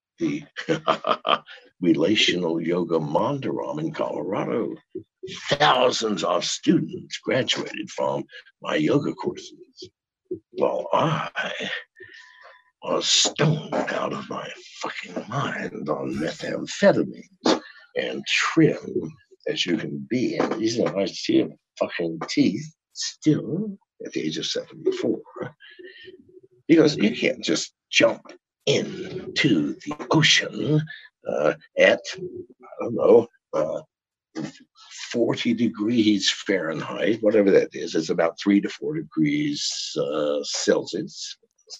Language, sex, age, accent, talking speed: English, male, 60-79, American, 105 wpm